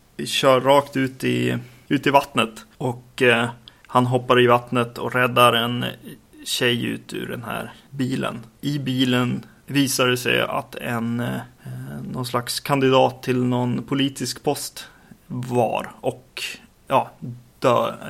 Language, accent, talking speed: Swedish, native, 135 wpm